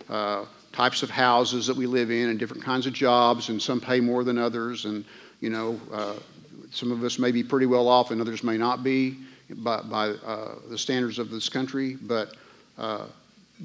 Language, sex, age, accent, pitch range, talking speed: English, male, 50-69, American, 115-135 Hz, 200 wpm